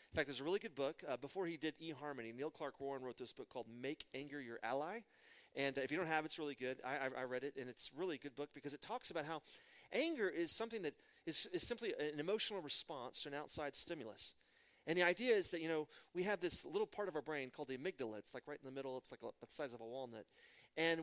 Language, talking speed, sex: English, 270 wpm, male